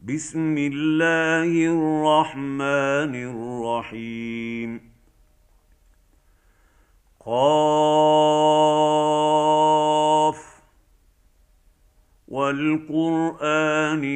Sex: male